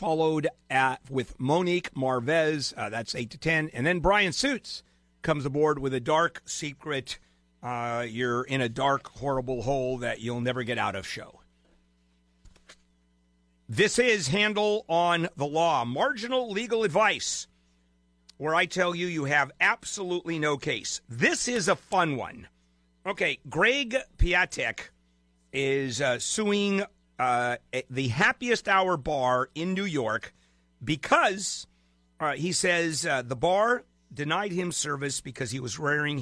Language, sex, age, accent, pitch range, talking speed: English, male, 50-69, American, 115-170 Hz, 140 wpm